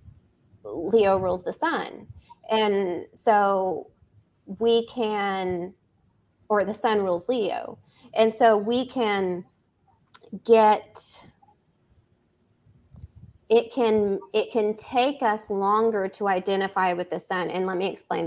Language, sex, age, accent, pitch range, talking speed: English, female, 30-49, American, 185-215 Hz, 110 wpm